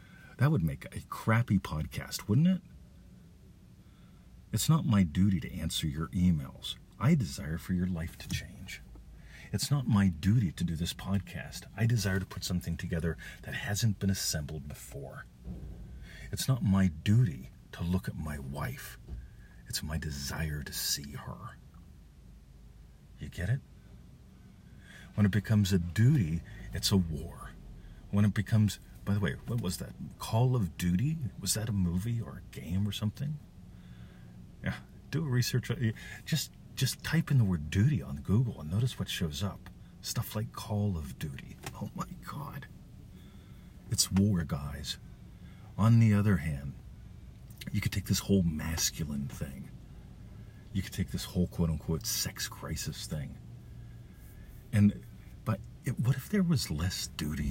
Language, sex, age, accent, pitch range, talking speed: English, male, 50-69, American, 80-110 Hz, 155 wpm